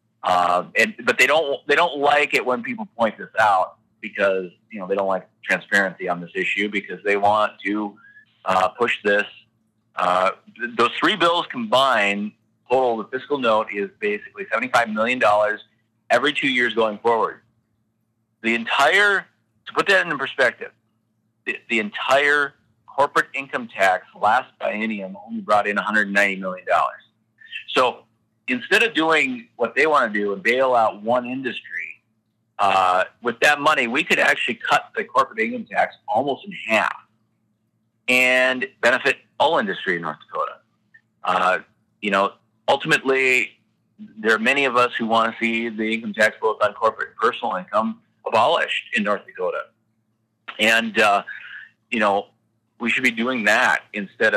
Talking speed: 165 wpm